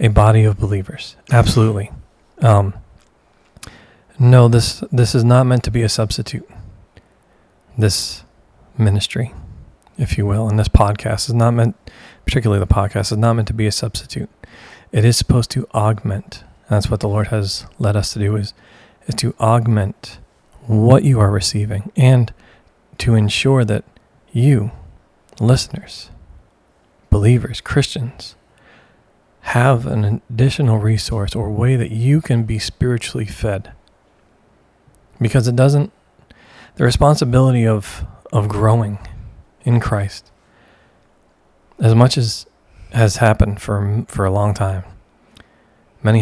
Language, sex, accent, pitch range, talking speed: English, male, American, 105-120 Hz, 130 wpm